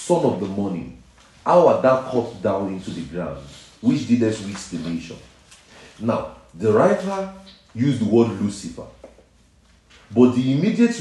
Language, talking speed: English, 145 wpm